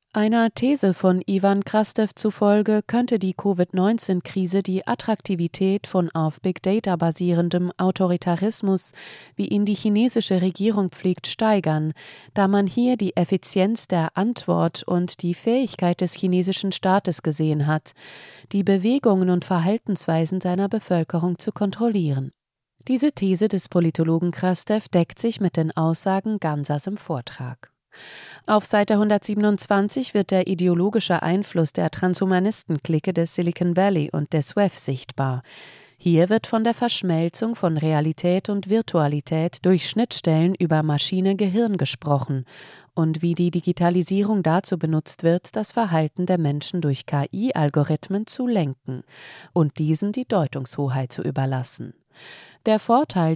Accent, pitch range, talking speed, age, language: German, 160-205 Hz, 125 wpm, 20-39, German